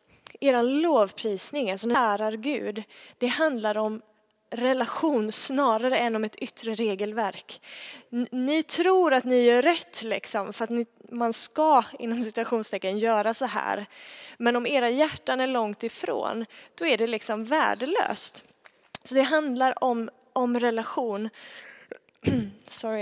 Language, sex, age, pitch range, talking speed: Swedish, female, 20-39, 215-260 Hz, 135 wpm